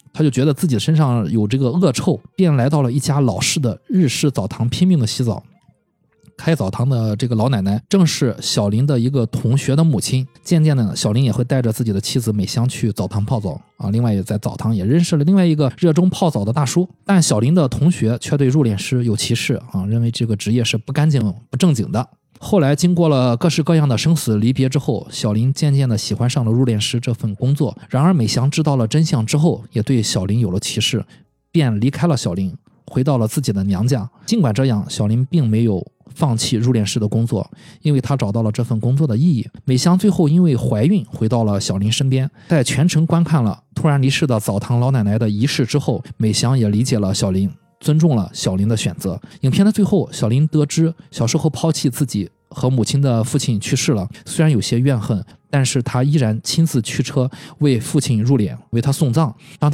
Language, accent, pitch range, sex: Chinese, native, 115-150 Hz, male